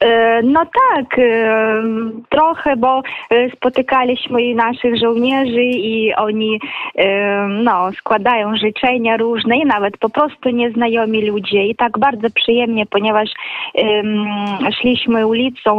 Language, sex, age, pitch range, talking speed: Polish, female, 20-39, 210-240 Hz, 105 wpm